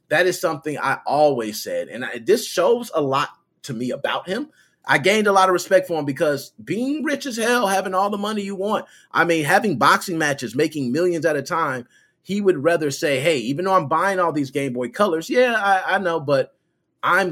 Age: 30-49